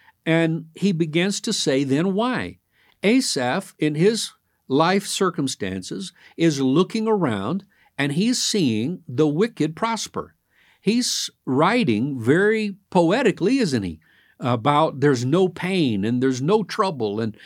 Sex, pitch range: male, 135-205 Hz